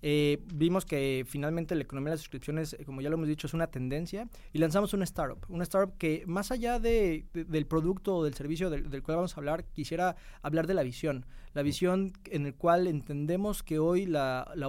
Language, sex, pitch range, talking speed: Spanish, male, 140-175 Hz, 220 wpm